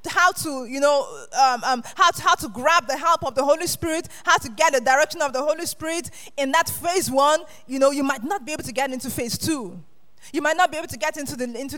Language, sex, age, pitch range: English, female, 20-39, 265-350 Hz